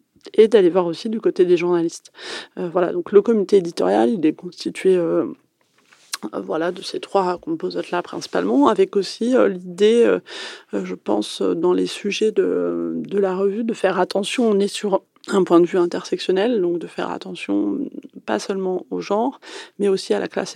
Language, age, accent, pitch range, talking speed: French, 30-49, French, 175-270 Hz, 180 wpm